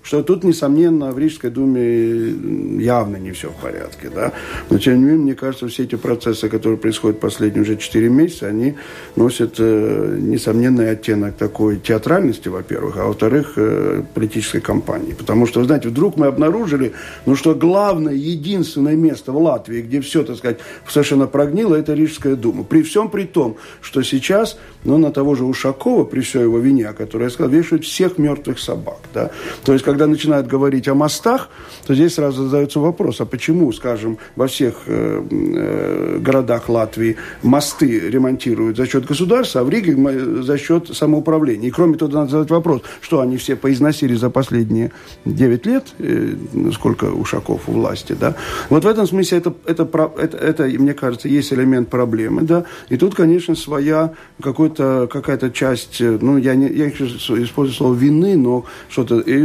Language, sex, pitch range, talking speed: Russian, male, 120-155 Hz, 165 wpm